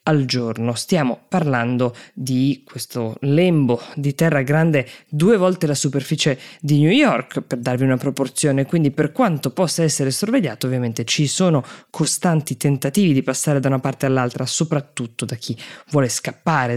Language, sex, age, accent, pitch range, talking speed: Italian, female, 20-39, native, 125-165 Hz, 155 wpm